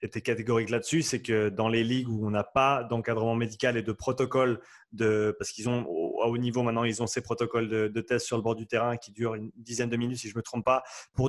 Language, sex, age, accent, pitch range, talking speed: French, male, 30-49, French, 115-135 Hz, 265 wpm